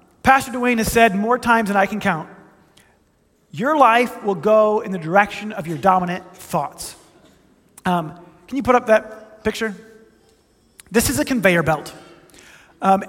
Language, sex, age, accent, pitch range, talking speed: English, male, 30-49, American, 195-270 Hz, 155 wpm